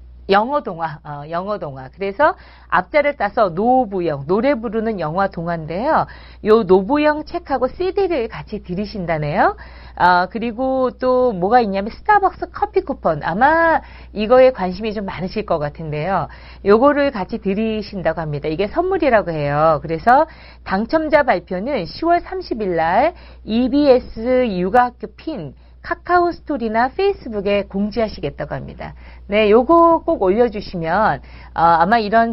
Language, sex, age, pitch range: Korean, female, 40-59, 180-275 Hz